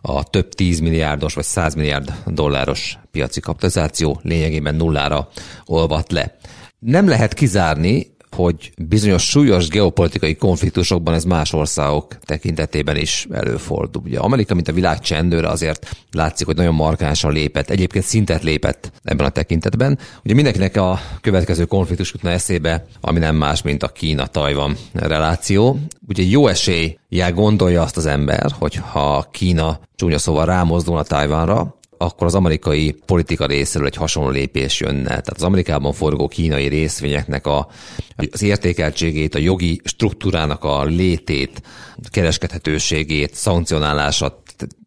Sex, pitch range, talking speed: male, 75-90 Hz, 130 wpm